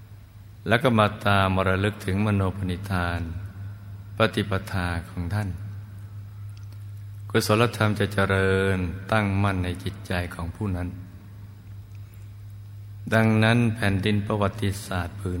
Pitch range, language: 95-105 Hz, Thai